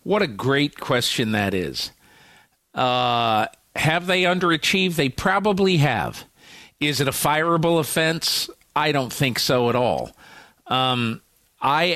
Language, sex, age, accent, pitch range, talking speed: English, male, 50-69, American, 120-155 Hz, 130 wpm